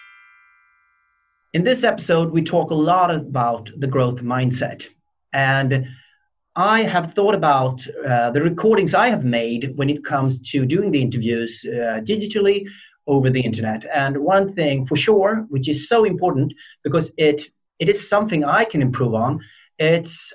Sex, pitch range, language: male, 125-185 Hz, Swedish